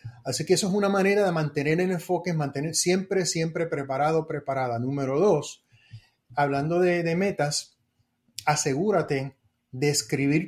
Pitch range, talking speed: 140-180 Hz, 135 wpm